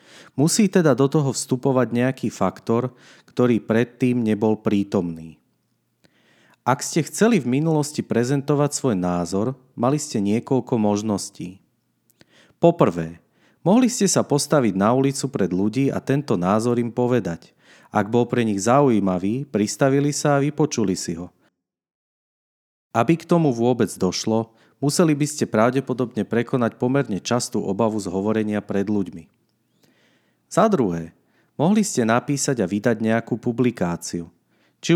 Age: 40-59